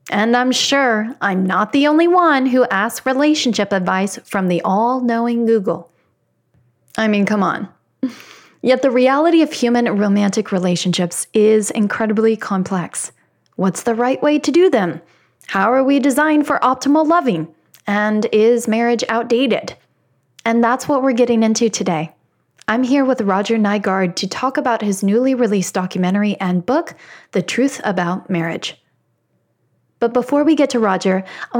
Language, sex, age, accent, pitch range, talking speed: English, female, 20-39, American, 190-255 Hz, 150 wpm